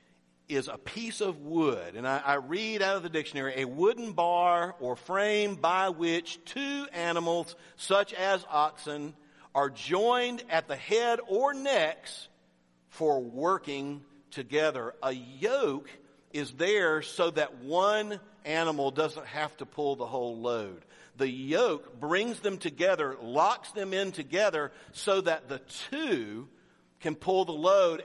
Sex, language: male, English